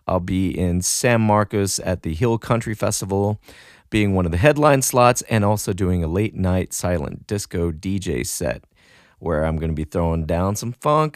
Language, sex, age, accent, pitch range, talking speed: English, male, 40-59, American, 100-130 Hz, 190 wpm